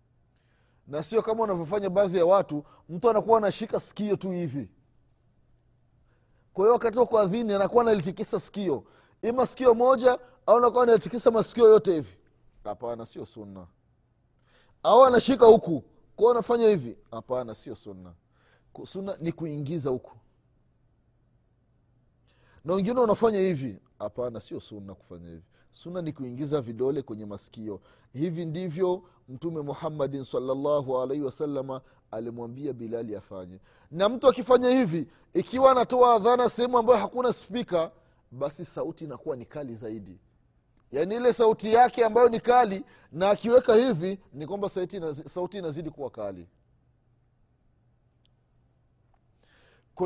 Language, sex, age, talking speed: Swahili, male, 30-49, 125 wpm